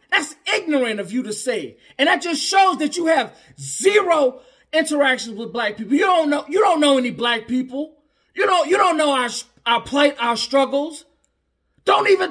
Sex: male